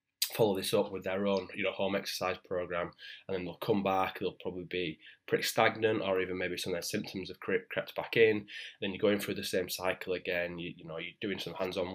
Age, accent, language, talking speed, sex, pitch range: 10-29, British, English, 240 wpm, male, 95-105 Hz